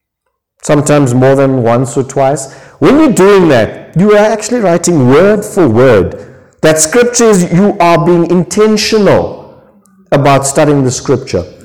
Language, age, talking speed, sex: English, 50-69, 145 wpm, male